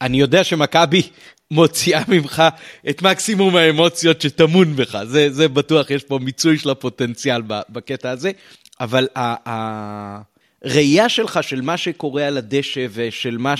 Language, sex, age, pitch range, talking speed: Hebrew, male, 30-49, 120-160 Hz, 135 wpm